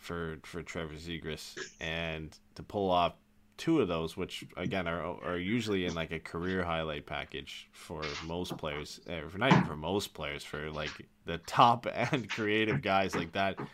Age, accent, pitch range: 20-39, American, 80-105 Hz